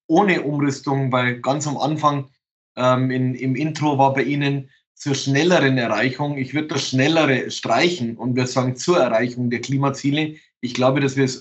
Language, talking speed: German, 170 wpm